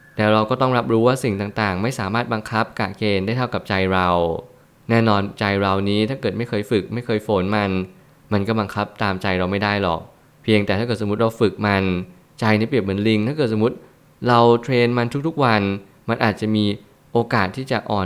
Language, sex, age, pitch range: Thai, male, 20-39, 100-120 Hz